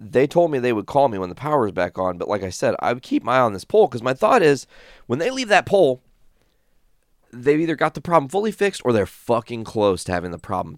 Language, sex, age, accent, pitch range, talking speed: English, male, 30-49, American, 90-125 Hz, 275 wpm